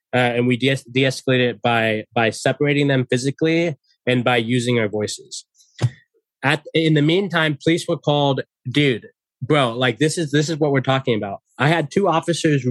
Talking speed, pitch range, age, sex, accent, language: 180 wpm, 120-155 Hz, 20-39, male, American, English